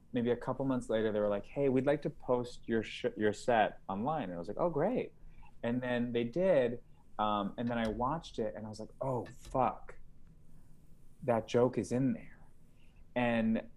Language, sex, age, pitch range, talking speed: English, male, 30-49, 100-125 Hz, 200 wpm